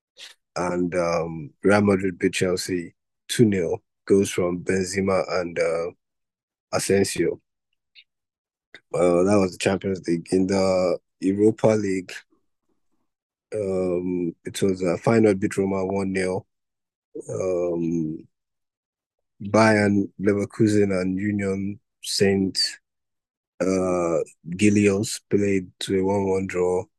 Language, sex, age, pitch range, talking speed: English, male, 20-39, 90-100 Hz, 95 wpm